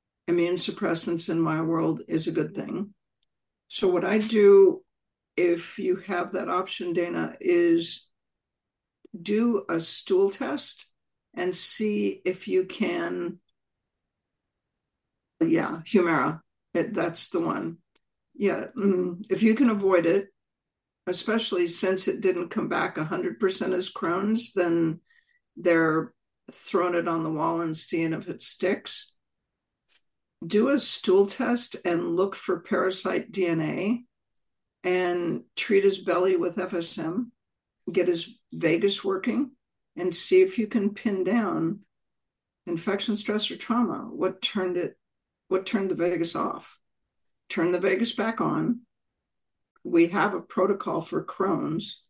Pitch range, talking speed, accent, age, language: 175-225 Hz, 130 wpm, American, 60-79, English